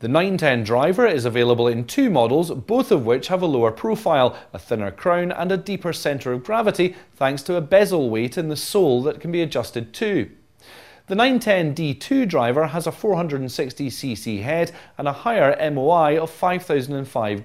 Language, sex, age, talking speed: English, male, 30-49, 175 wpm